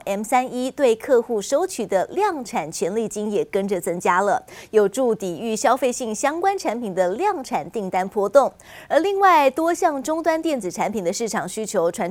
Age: 20-39